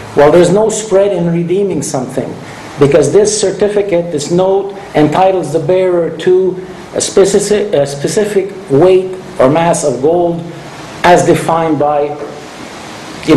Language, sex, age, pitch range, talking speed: English, male, 50-69, 140-180 Hz, 120 wpm